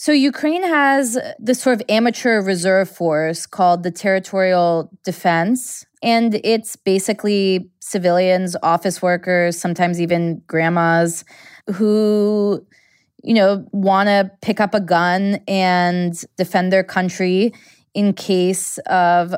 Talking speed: 120 wpm